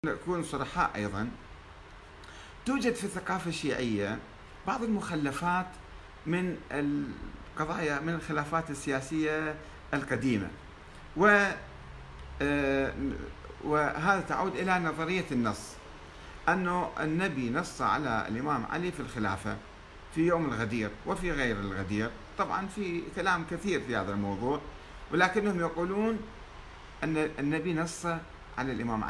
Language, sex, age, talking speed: Arabic, male, 50-69, 100 wpm